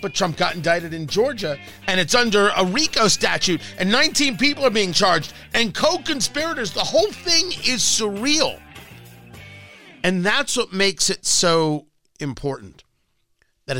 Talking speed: 145 wpm